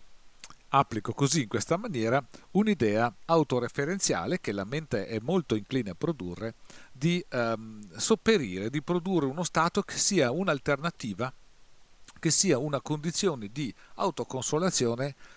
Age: 50-69